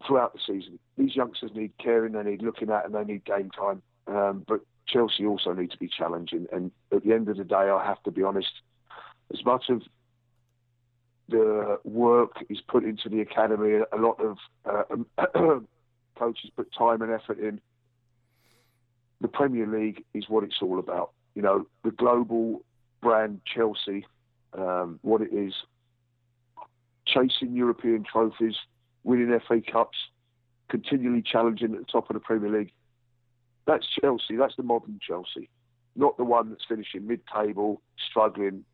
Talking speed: 160 wpm